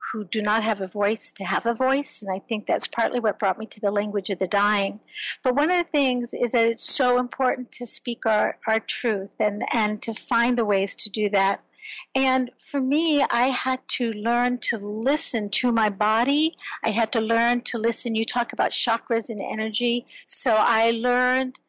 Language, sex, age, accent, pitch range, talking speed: English, female, 60-79, American, 210-250 Hz, 205 wpm